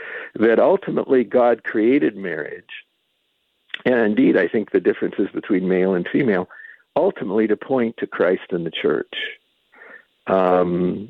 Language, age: English, 60-79